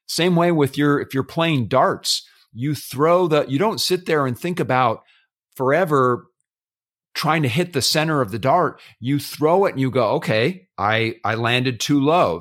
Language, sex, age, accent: English, male, 40-59, American